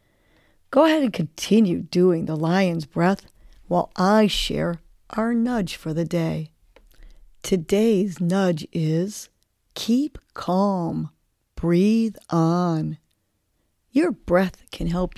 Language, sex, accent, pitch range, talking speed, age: English, female, American, 160-200 Hz, 105 wpm, 40-59